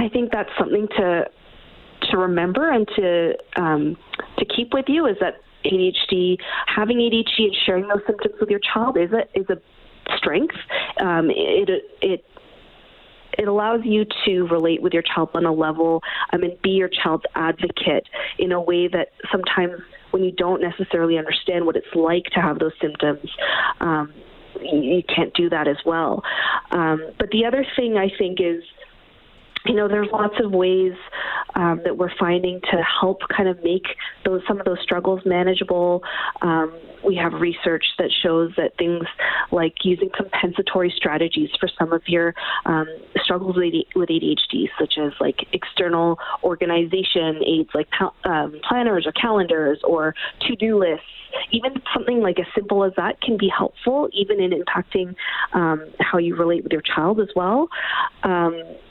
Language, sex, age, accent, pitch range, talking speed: English, female, 30-49, American, 170-215 Hz, 165 wpm